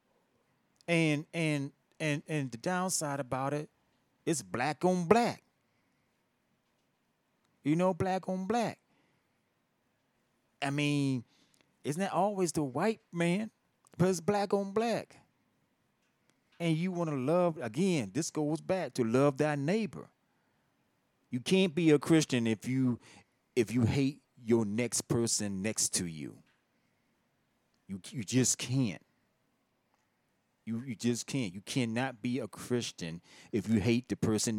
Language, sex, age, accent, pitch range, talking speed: English, male, 40-59, American, 110-155 Hz, 135 wpm